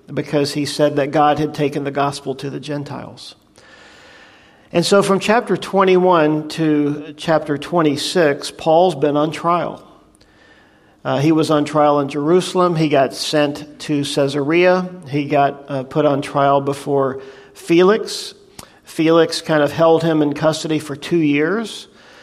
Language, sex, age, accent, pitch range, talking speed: English, male, 50-69, American, 145-165 Hz, 145 wpm